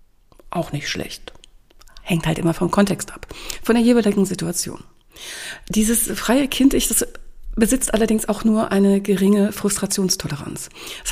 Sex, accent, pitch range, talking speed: female, German, 175-215 Hz, 130 wpm